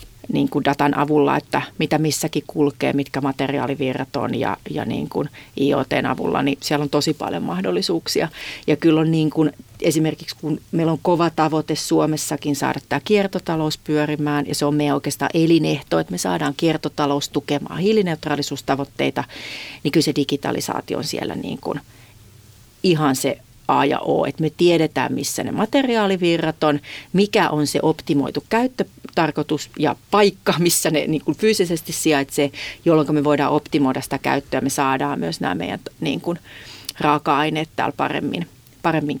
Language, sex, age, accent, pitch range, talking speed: Finnish, female, 40-59, native, 140-160 Hz, 155 wpm